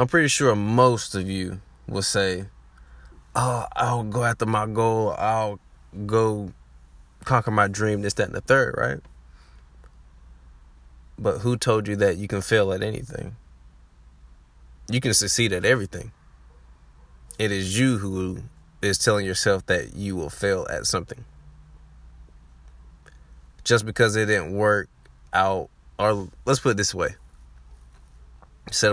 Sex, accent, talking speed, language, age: male, American, 135 wpm, English, 20-39